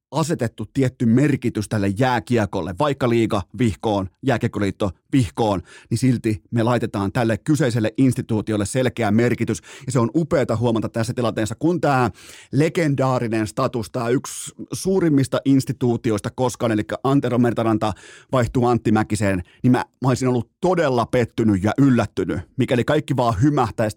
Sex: male